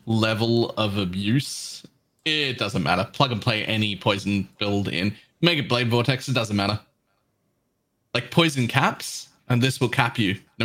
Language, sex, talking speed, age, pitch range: English, male, 165 wpm, 20-39, 110-140 Hz